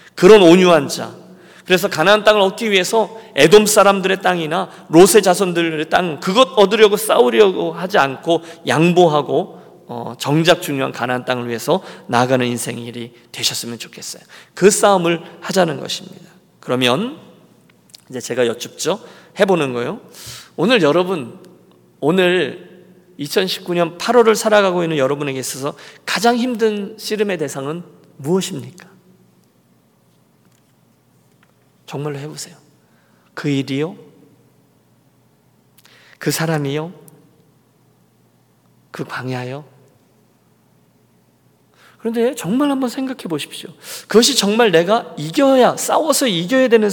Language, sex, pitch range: Korean, male, 140-205 Hz